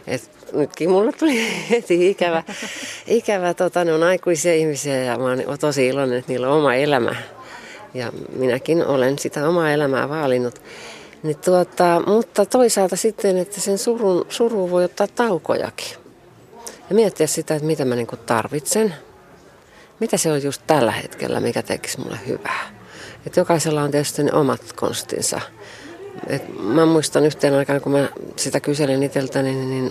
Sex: female